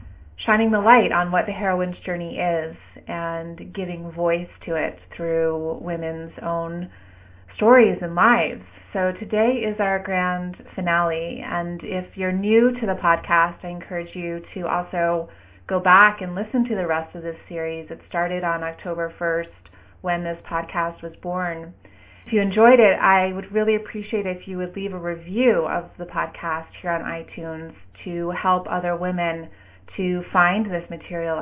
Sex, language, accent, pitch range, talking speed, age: female, English, American, 160-185 Hz, 165 wpm, 30-49